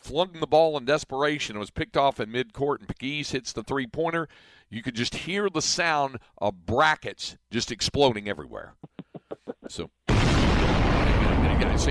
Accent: American